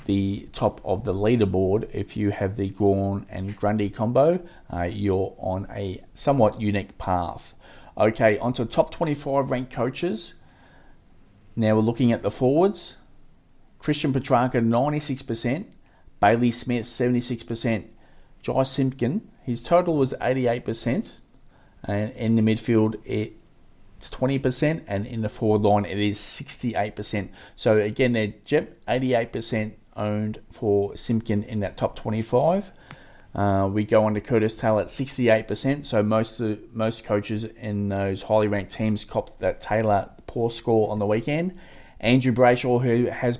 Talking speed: 140 wpm